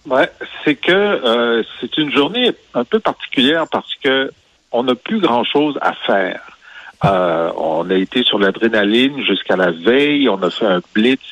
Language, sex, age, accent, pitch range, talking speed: French, male, 50-69, French, 105-130 Hz, 170 wpm